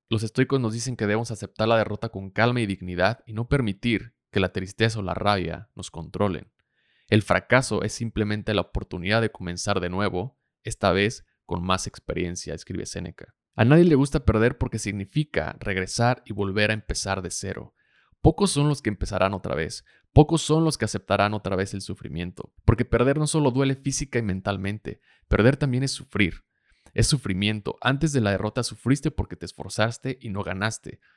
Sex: male